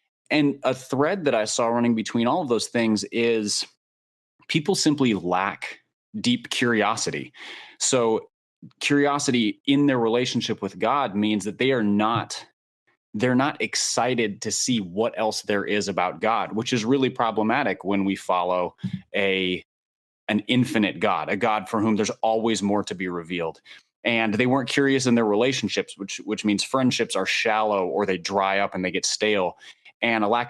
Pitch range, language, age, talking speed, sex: 100-125 Hz, English, 20-39, 170 wpm, male